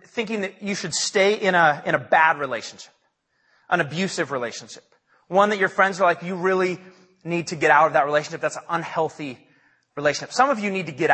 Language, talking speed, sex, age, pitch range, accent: English, 210 wpm, male, 30-49, 155-205 Hz, American